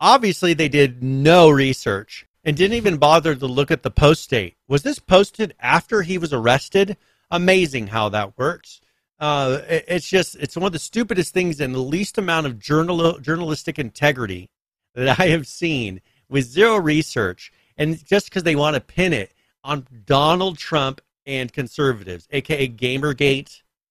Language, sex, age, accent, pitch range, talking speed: English, male, 40-59, American, 130-170 Hz, 165 wpm